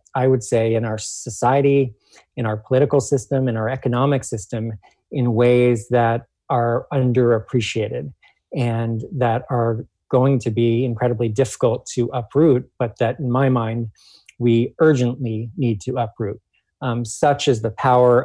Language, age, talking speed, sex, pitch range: English, 40-59, 145 wpm, male, 115-130 Hz